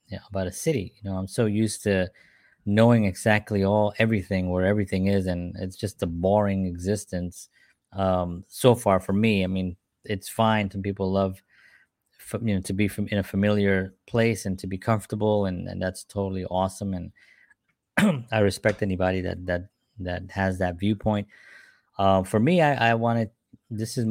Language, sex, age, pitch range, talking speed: English, male, 20-39, 95-110 Hz, 180 wpm